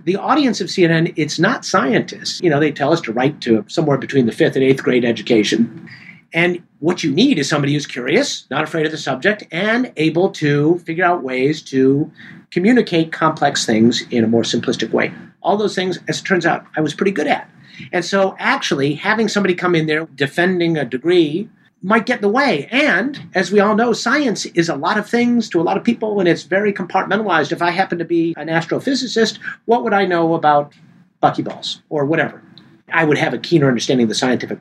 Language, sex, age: English, male, 50-69